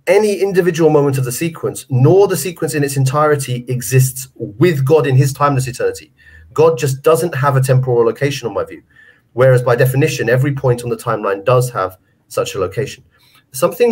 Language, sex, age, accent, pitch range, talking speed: English, male, 30-49, British, 130-165 Hz, 185 wpm